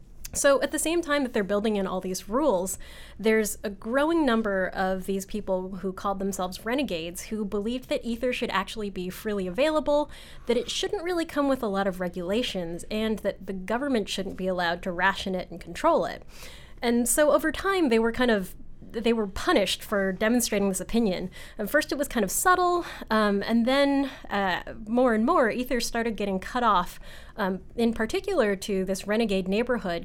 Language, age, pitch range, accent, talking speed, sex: English, 10-29, 190-245 Hz, American, 190 wpm, female